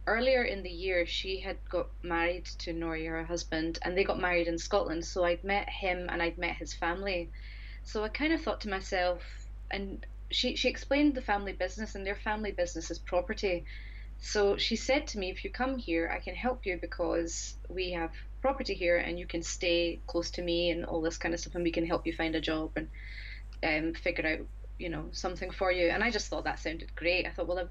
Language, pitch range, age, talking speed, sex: English, 165-185 Hz, 20-39, 230 wpm, female